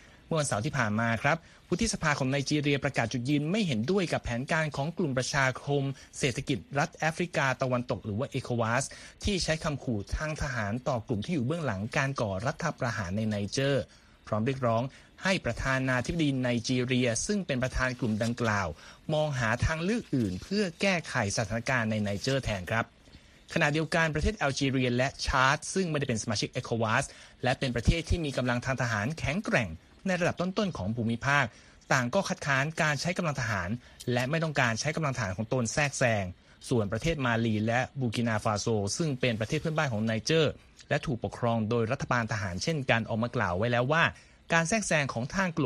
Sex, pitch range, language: male, 115-150 Hz, Thai